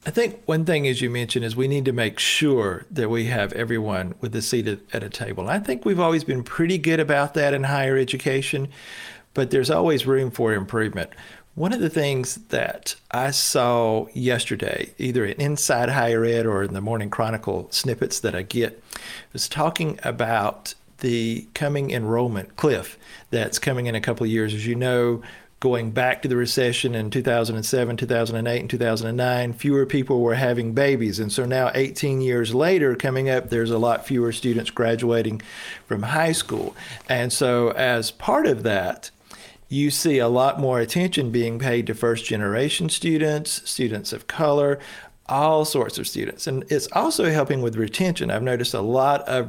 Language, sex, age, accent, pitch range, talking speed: English, male, 50-69, American, 115-145 Hz, 180 wpm